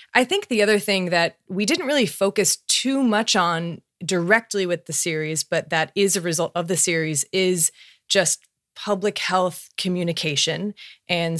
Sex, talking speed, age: female, 165 wpm, 20-39